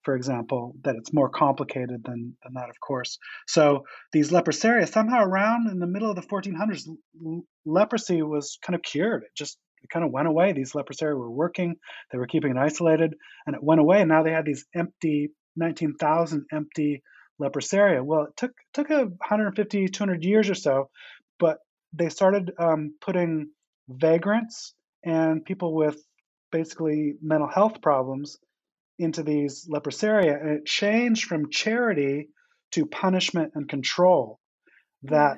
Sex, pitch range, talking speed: male, 145-180 Hz, 155 wpm